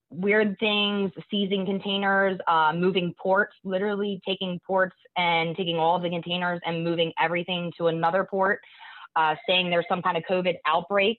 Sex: female